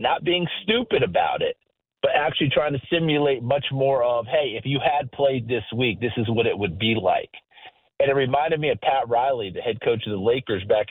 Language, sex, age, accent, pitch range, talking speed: English, male, 50-69, American, 120-155 Hz, 225 wpm